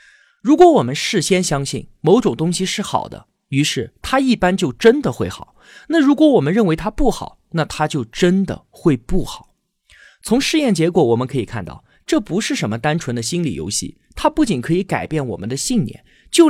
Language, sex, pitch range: Chinese, male, 135-230 Hz